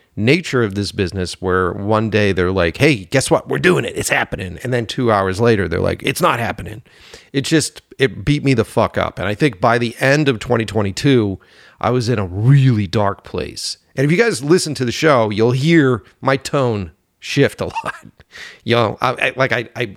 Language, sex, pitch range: English, male, 95-130 Hz